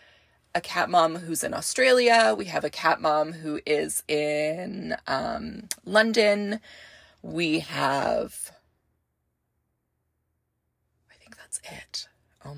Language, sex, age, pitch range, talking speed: English, female, 20-39, 145-180 Hz, 110 wpm